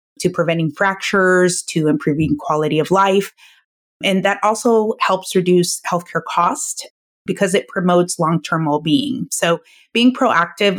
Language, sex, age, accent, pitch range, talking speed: English, female, 30-49, American, 160-190 Hz, 130 wpm